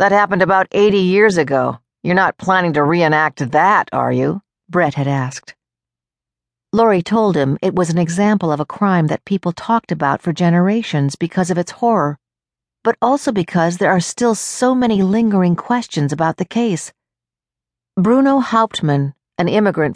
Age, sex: 50-69, female